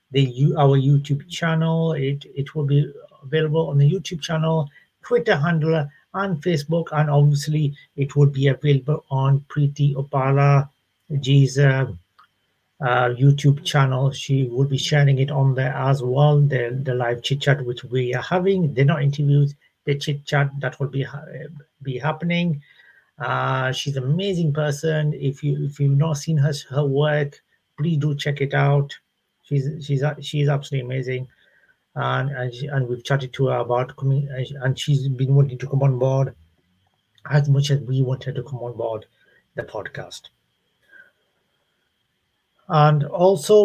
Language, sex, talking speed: English, male, 160 wpm